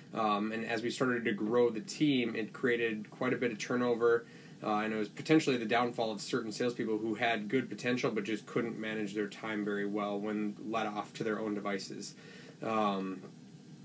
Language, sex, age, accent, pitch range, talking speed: English, male, 20-39, American, 110-125 Hz, 200 wpm